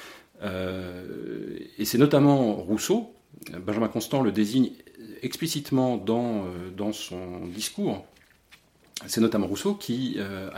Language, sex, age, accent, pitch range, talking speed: French, male, 40-59, French, 95-135 Hz, 110 wpm